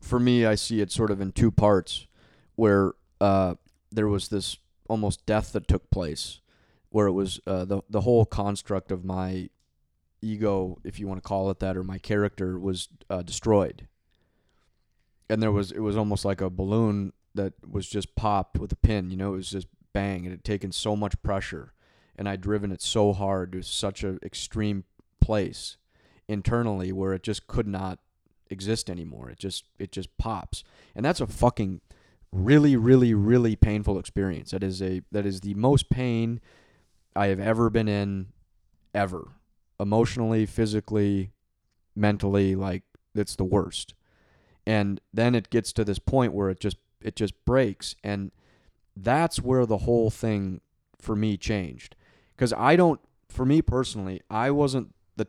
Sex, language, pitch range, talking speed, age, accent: male, English, 95-110 Hz, 170 wpm, 30-49, American